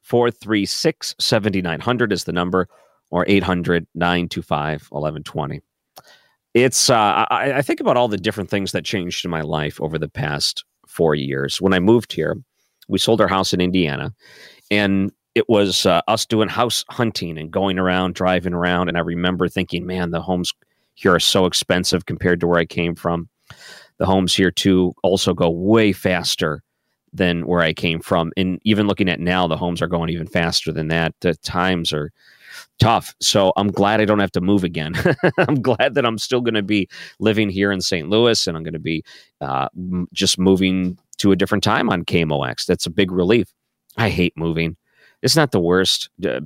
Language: English